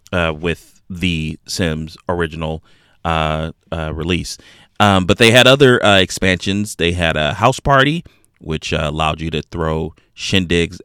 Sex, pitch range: male, 85-105 Hz